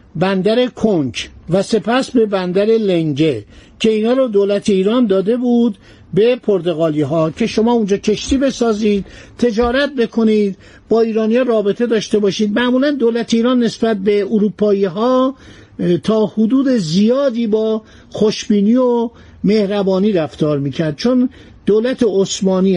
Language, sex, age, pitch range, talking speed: Persian, male, 50-69, 185-230 Hz, 125 wpm